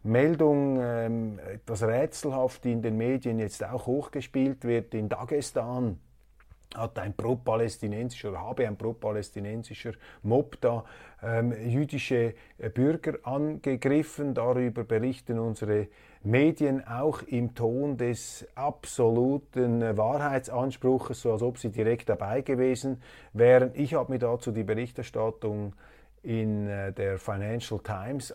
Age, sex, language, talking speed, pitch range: 30-49, male, German, 115 wpm, 110-130 Hz